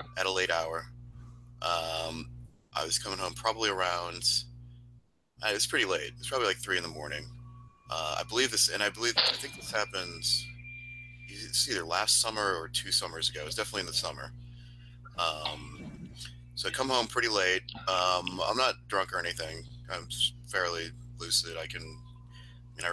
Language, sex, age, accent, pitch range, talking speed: English, male, 30-49, American, 80-120 Hz, 175 wpm